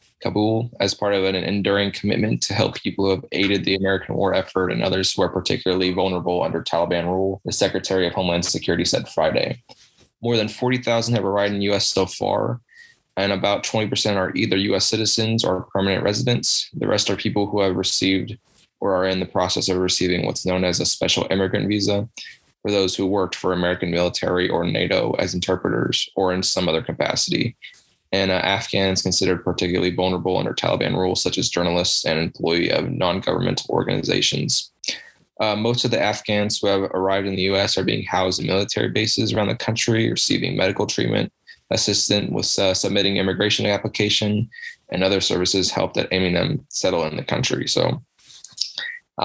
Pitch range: 90-105 Hz